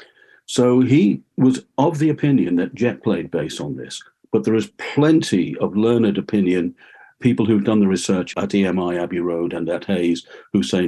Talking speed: 180 wpm